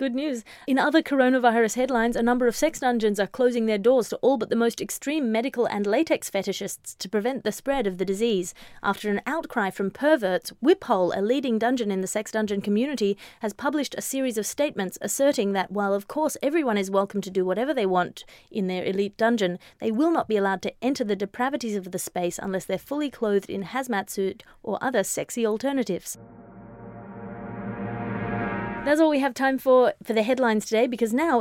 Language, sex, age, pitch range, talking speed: English, female, 30-49, 200-270 Hz, 200 wpm